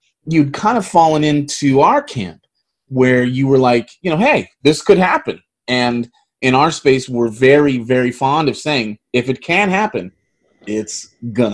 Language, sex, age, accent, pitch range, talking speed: English, male, 30-49, American, 115-145 Hz, 170 wpm